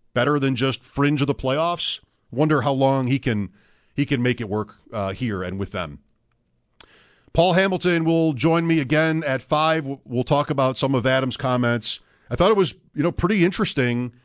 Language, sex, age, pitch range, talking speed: English, male, 50-69, 115-150 Hz, 190 wpm